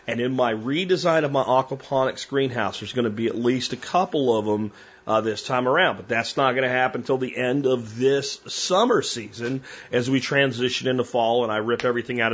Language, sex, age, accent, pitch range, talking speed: English, male, 40-59, American, 110-135 Hz, 220 wpm